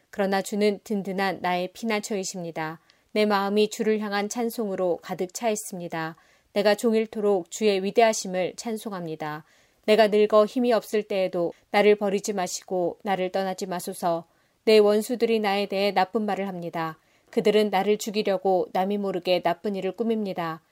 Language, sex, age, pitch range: Korean, female, 30-49, 185-215 Hz